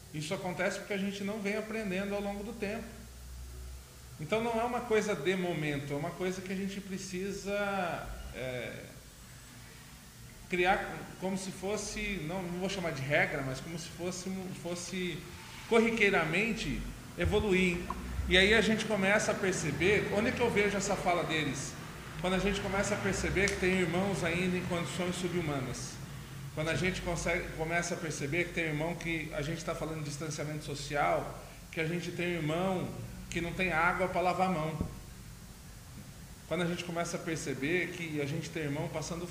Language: Portuguese